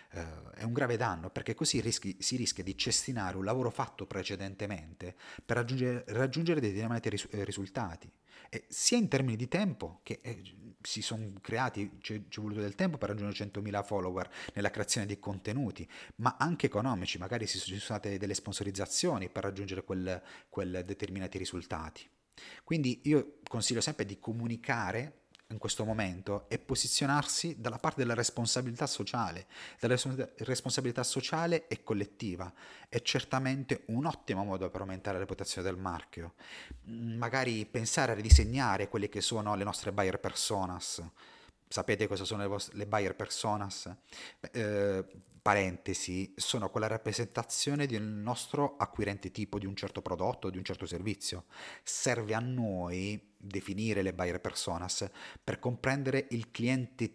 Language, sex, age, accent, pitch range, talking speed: Italian, male, 30-49, native, 100-125 Hz, 145 wpm